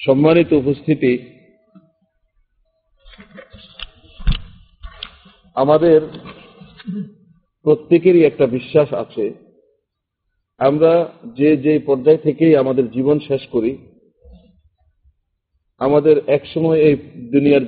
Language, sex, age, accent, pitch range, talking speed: Bengali, male, 50-69, native, 125-170 Hz, 70 wpm